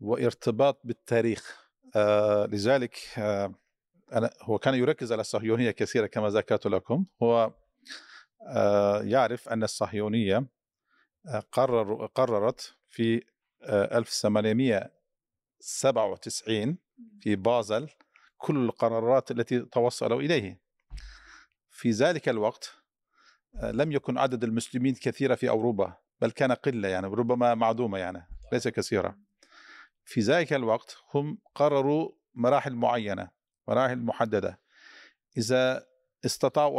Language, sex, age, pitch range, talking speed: Arabic, male, 50-69, 115-135 Hz, 105 wpm